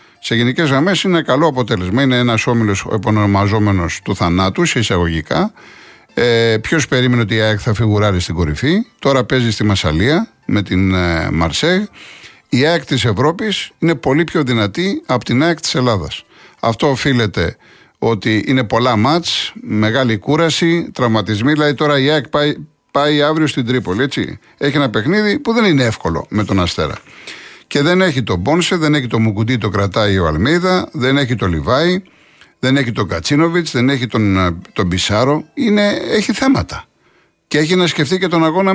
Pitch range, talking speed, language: 110-160 Hz, 165 wpm, Greek